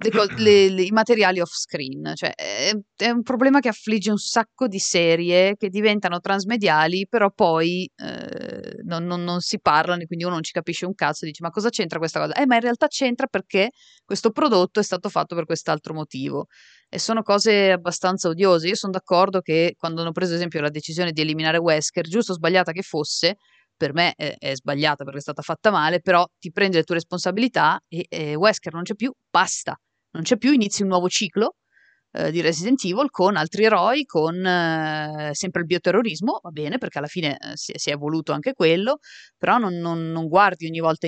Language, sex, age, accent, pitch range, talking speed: Italian, female, 30-49, native, 160-200 Hz, 205 wpm